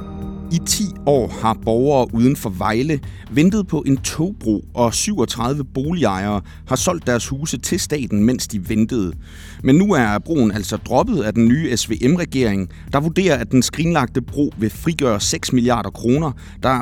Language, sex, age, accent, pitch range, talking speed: Danish, male, 30-49, native, 100-135 Hz, 165 wpm